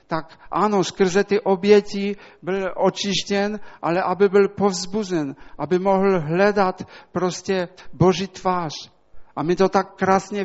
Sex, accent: male, Polish